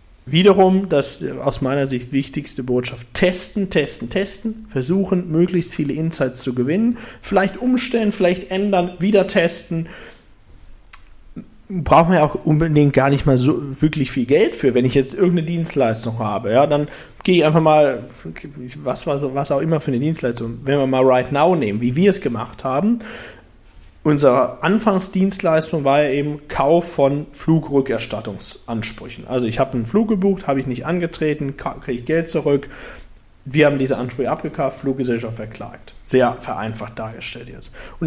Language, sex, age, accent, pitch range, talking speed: German, male, 40-59, German, 130-175 Hz, 160 wpm